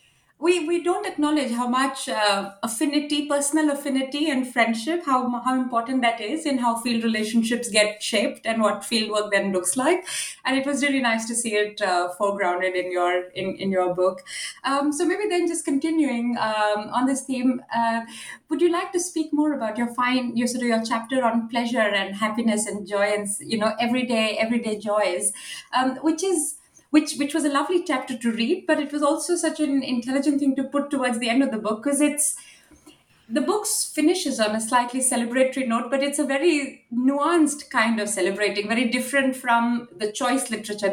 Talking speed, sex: 195 wpm, female